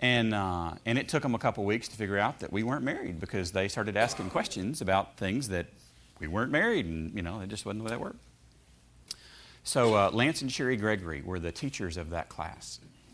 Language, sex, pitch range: English, male, 80-110 Hz